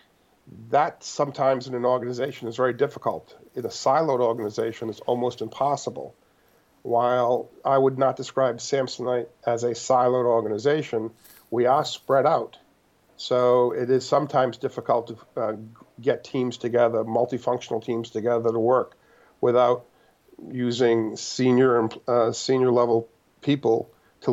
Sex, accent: male, American